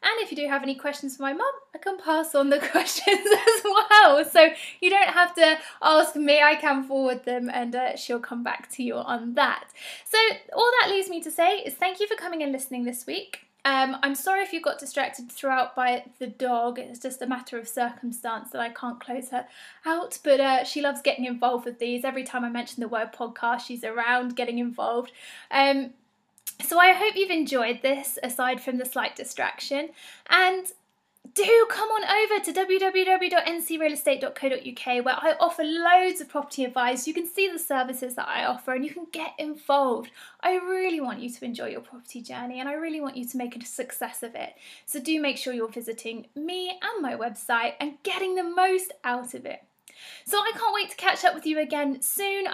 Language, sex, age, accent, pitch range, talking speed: English, female, 20-39, British, 250-345 Hz, 210 wpm